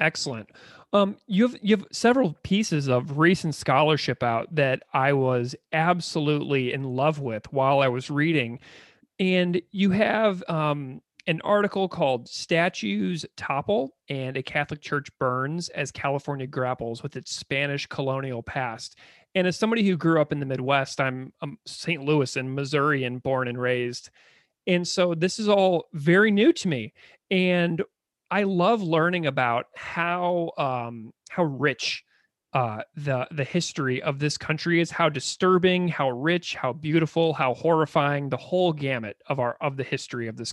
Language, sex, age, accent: English, male, 30-49, American